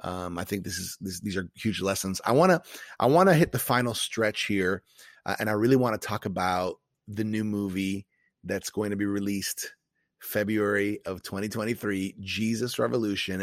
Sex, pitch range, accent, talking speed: male, 105-125 Hz, American, 190 wpm